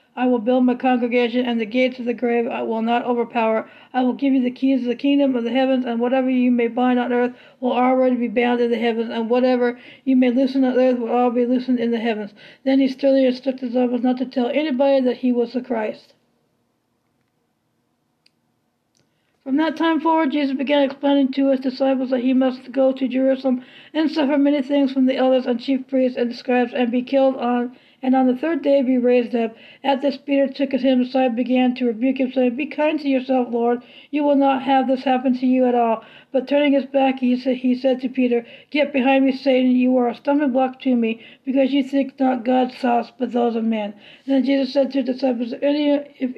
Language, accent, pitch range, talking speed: English, American, 245-270 Hz, 225 wpm